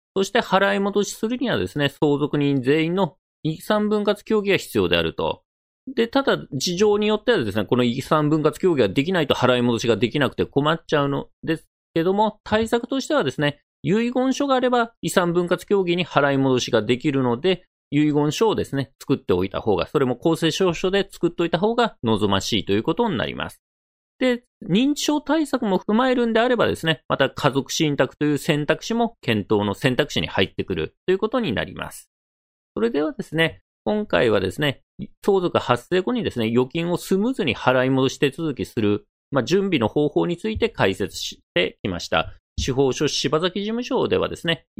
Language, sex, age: Japanese, male, 40-59